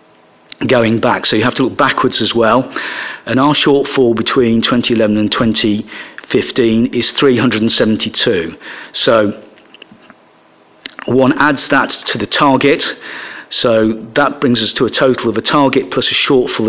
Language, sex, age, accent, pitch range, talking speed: English, male, 50-69, British, 110-130 Hz, 140 wpm